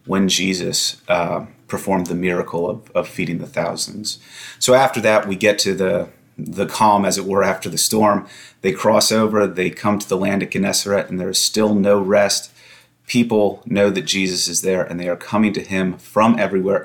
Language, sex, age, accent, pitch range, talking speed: English, male, 30-49, American, 90-105 Hz, 200 wpm